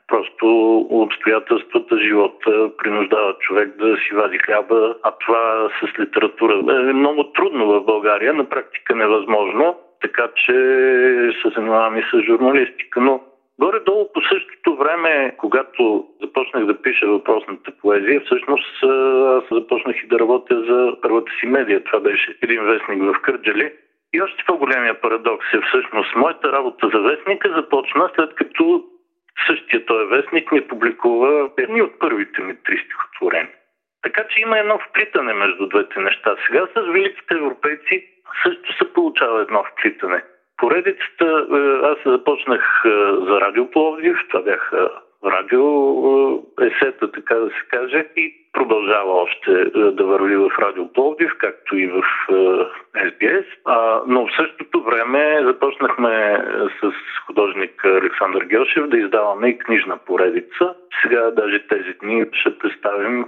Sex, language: male, Bulgarian